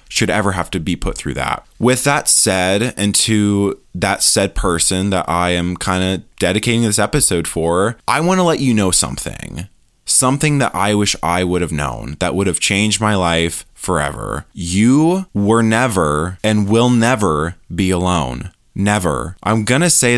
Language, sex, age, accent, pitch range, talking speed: English, male, 20-39, American, 90-125 Hz, 170 wpm